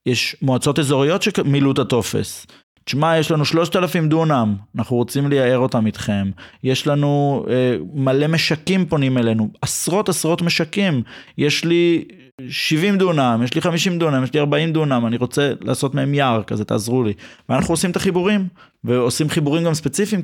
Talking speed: 160 wpm